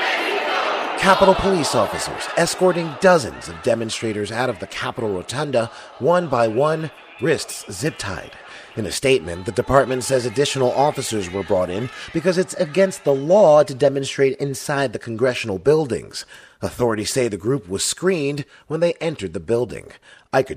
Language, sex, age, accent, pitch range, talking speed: English, male, 30-49, American, 110-130 Hz, 150 wpm